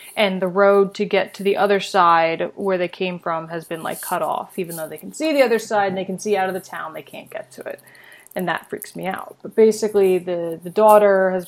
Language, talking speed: English, 260 wpm